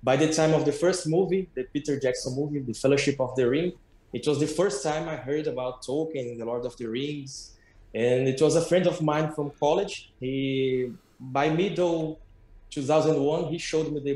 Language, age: English, 20-39